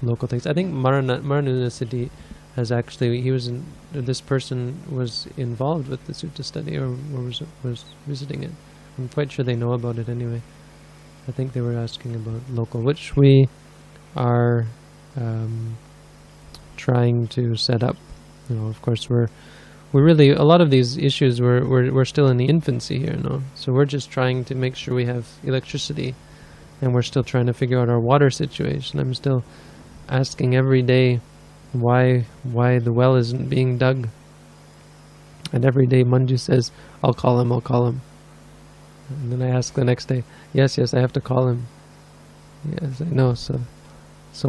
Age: 20-39